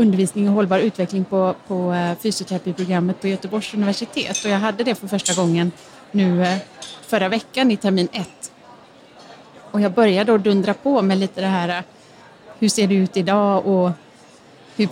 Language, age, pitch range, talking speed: Swedish, 30-49, 180-220 Hz, 160 wpm